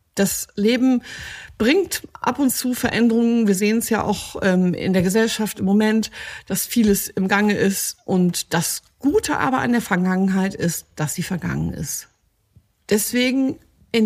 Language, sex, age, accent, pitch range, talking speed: German, female, 50-69, German, 185-240 Hz, 160 wpm